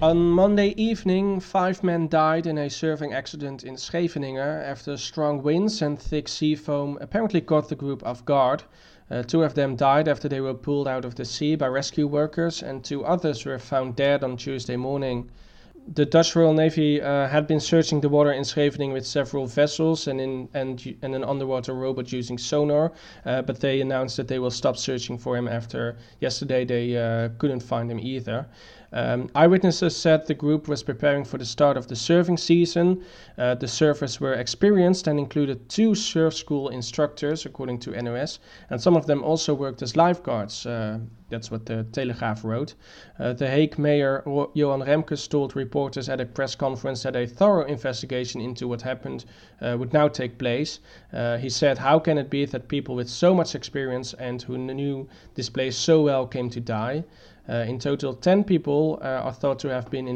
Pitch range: 125-155 Hz